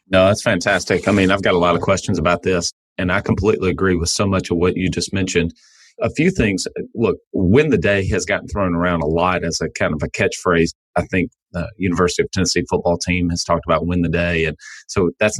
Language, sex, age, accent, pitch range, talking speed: English, male, 30-49, American, 85-100 Hz, 240 wpm